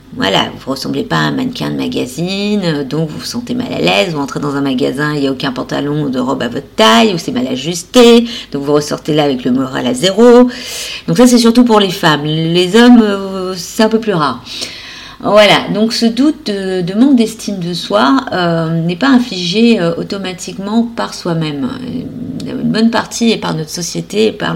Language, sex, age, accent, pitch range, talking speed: French, female, 40-59, French, 165-235 Hz, 215 wpm